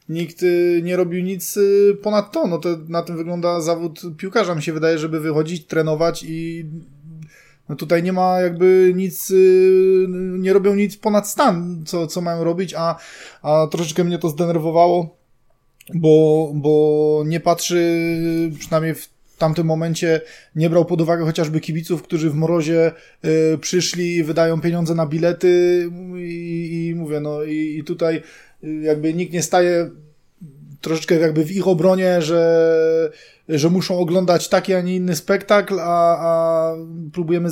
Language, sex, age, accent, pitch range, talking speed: Polish, male, 20-39, native, 160-175 Hz, 140 wpm